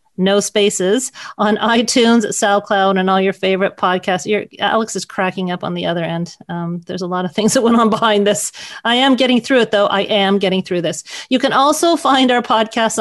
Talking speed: 215 wpm